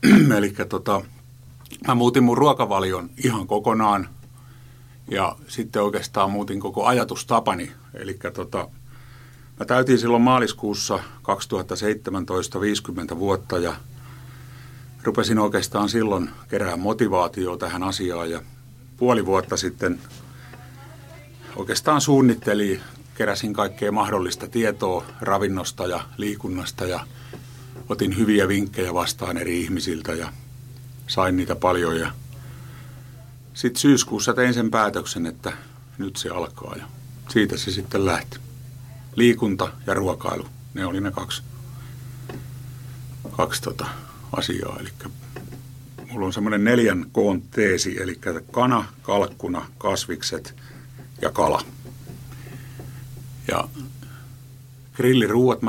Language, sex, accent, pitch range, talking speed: Finnish, male, native, 105-130 Hz, 100 wpm